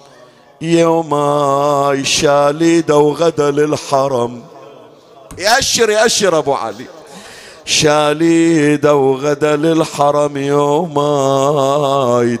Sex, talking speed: male, 60 wpm